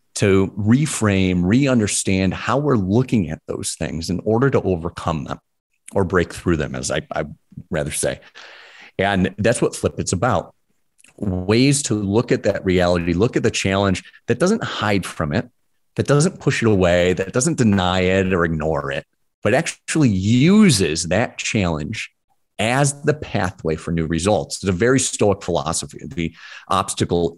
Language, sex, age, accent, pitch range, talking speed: English, male, 30-49, American, 85-115 Hz, 160 wpm